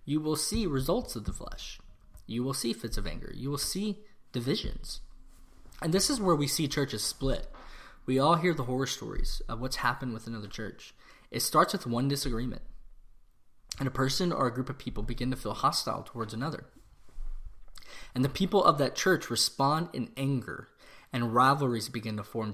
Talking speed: 185 wpm